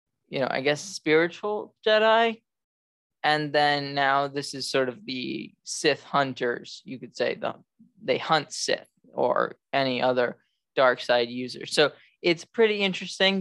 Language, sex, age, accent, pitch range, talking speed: English, male, 20-39, American, 125-165 Hz, 150 wpm